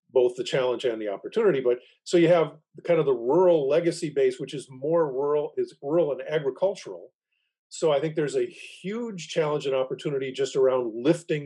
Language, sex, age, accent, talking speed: English, male, 50-69, American, 190 wpm